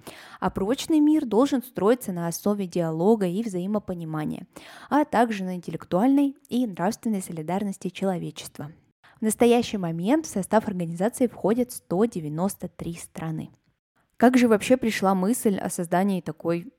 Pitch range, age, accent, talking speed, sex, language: 180-235 Hz, 10-29, native, 125 wpm, female, Russian